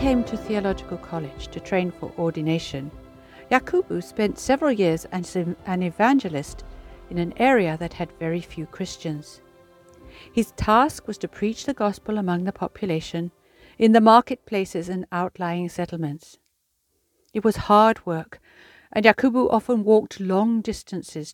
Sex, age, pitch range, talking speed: female, 60-79, 165-240 Hz, 145 wpm